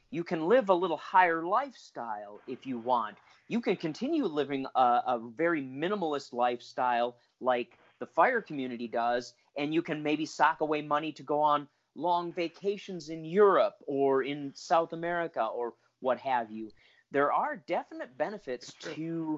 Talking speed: 160 wpm